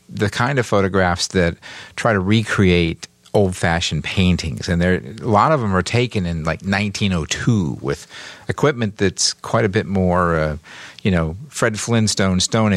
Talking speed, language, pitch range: 160 wpm, English, 90-110 Hz